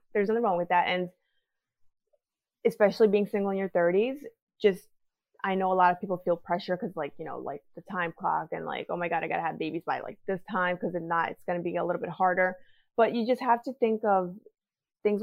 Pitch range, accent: 180-230 Hz, American